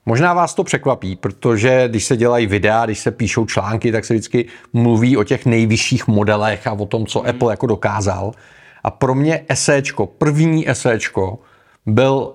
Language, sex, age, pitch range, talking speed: Czech, male, 40-59, 110-130 Hz, 170 wpm